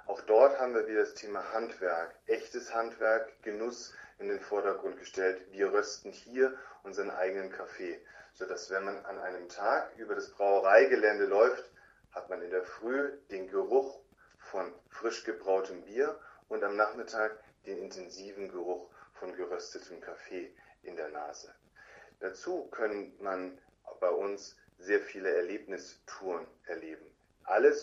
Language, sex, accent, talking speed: Italian, male, German, 140 wpm